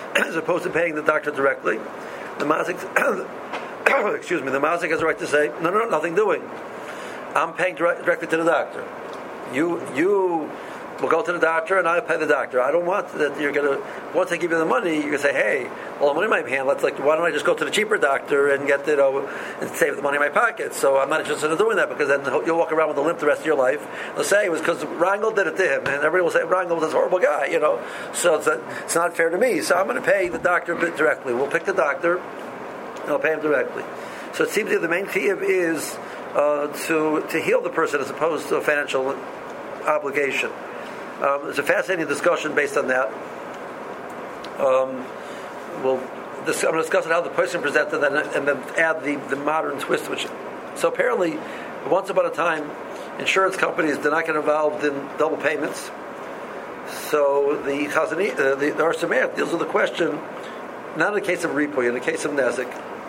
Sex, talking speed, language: male, 220 wpm, English